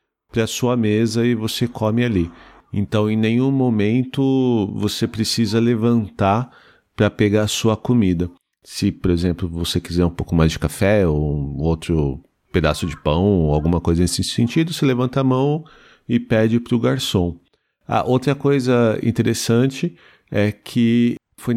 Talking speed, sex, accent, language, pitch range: 160 wpm, male, Brazilian, Portuguese, 95-120 Hz